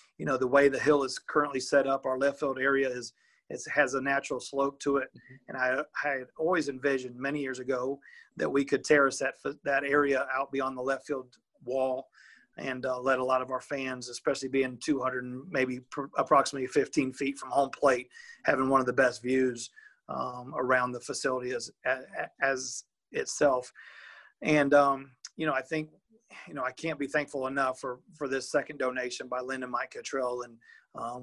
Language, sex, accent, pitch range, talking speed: English, male, American, 130-140 Hz, 195 wpm